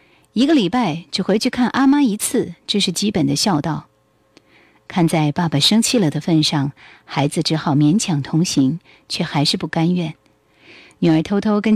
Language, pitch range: Chinese, 145-205 Hz